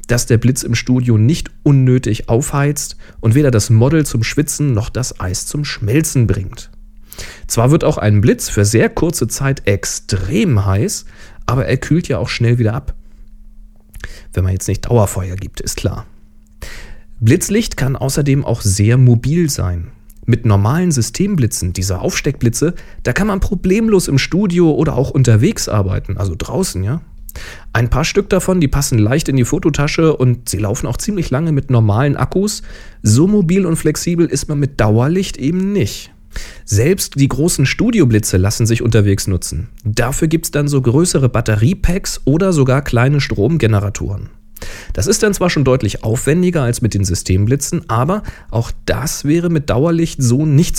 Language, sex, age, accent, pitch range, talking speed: German, male, 40-59, German, 105-150 Hz, 165 wpm